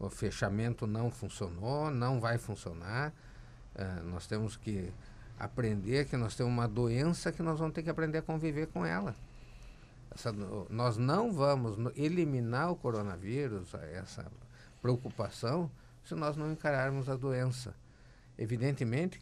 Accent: Brazilian